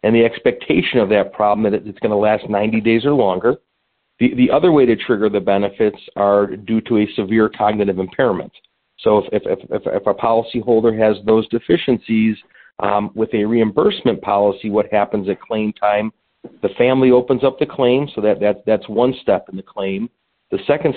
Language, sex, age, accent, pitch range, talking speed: English, male, 40-59, American, 100-115 Hz, 190 wpm